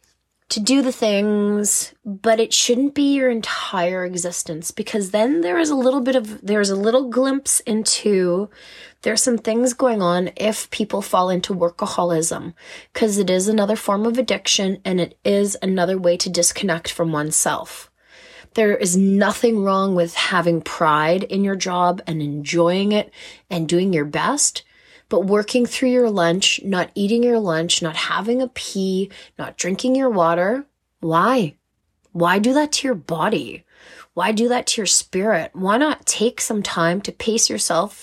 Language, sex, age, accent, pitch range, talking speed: English, female, 20-39, American, 175-230 Hz, 165 wpm